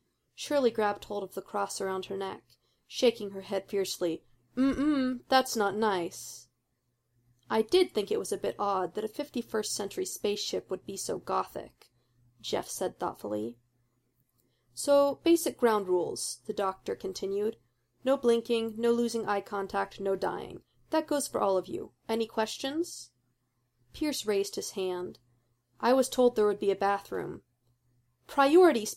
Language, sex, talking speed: English, female, 150 wpm